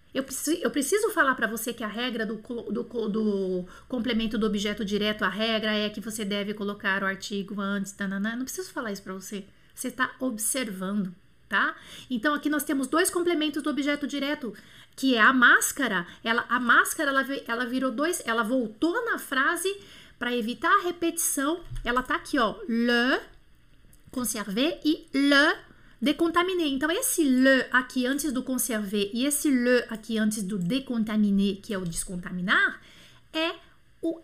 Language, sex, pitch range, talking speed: French, female, 220-295 Hz, 160 wpm